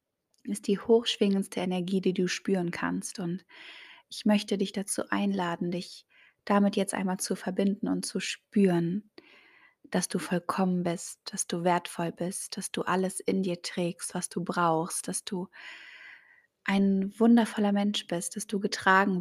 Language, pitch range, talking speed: German, 180-205 Hz, 155 wpm